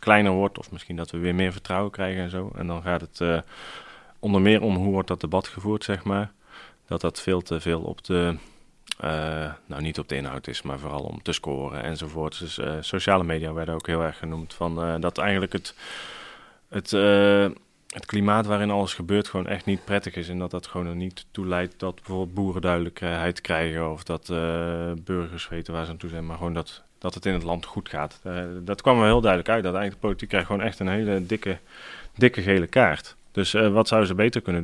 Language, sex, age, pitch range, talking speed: Dutch, male, 30-49, 85-100 Hz, 225 wpm